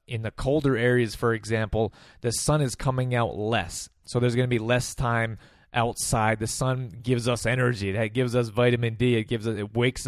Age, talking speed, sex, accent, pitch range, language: 20-39, 210 wpm, male, American, 110-125 Hz, English